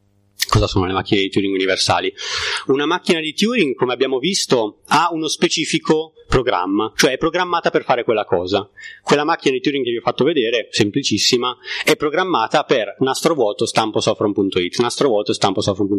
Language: Italian